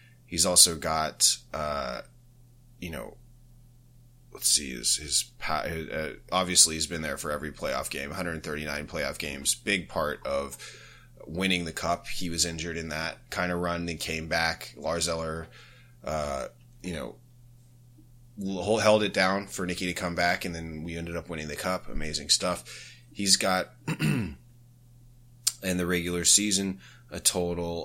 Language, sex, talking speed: English, male, 155 wpm